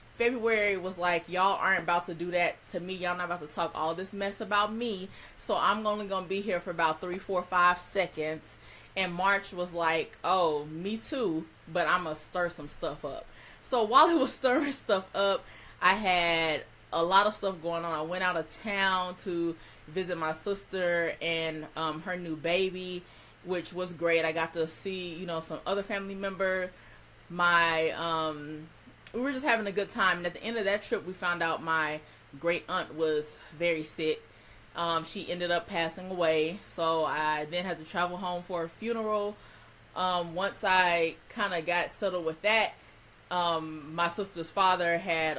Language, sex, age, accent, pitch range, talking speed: English, female, 20-39, American, 160-190 Hz, 195 wpm